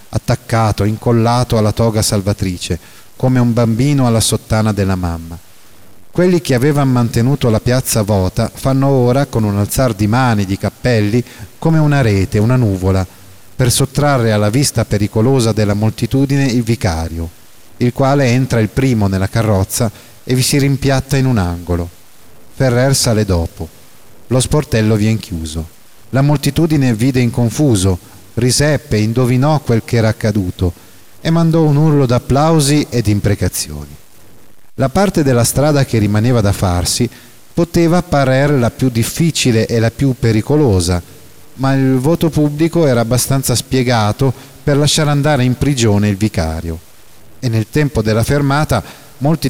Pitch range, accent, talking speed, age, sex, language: 105-135 Hz, native, 145 wpm, 30-49, male, Italian